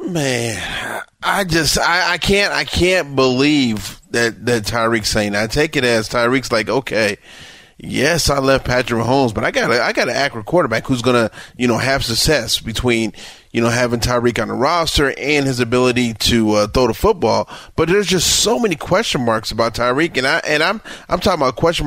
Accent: American